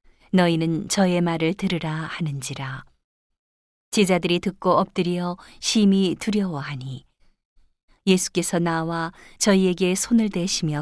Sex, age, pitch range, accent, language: female, 40-59, 150-195 Hz, native, Korean